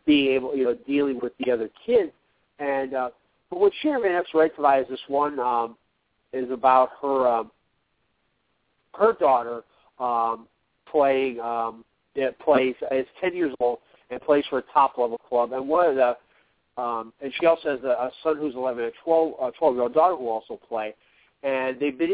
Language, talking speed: English, 180 wpm